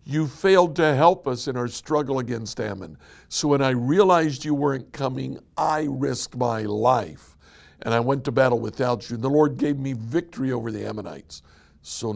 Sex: male